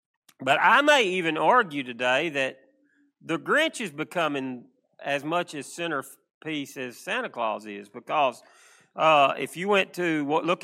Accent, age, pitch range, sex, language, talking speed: American, 40-59, 140-175 Hz, male, English, 145 wpm